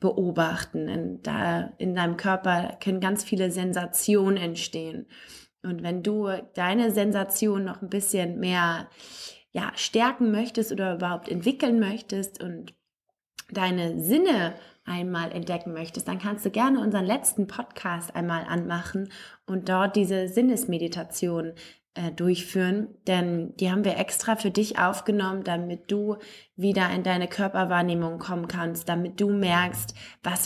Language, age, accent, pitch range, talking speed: English, 20-39, German, 175-215 Hz, 130 wpm